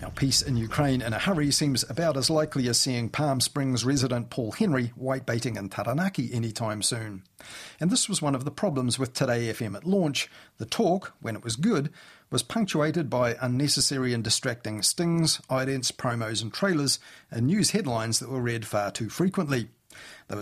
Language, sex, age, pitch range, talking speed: English, male, 40-59, 115-150 Hz, 180 wpm